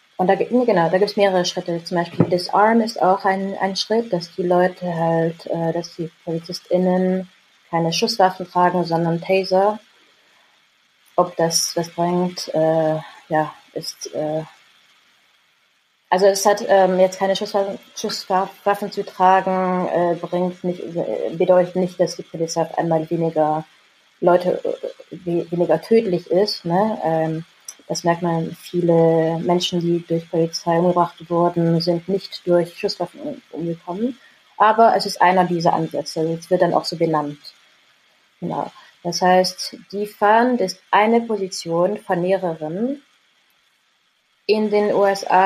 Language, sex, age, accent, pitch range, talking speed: German, female, 20-39, German, 170-195 Hz, 135 wpm